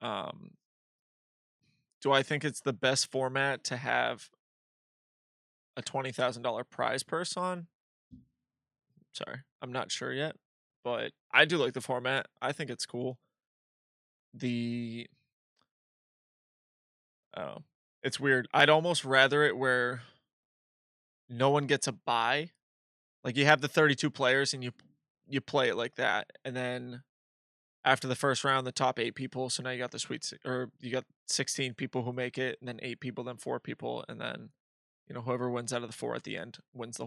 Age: 20-39